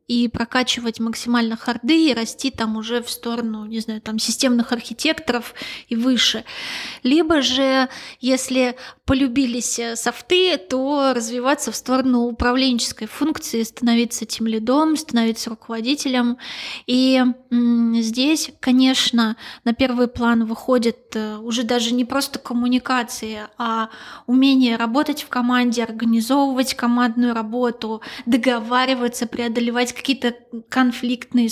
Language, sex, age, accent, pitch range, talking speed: Russian, female, 20-39, native, 235-260 Hz, 110 wpm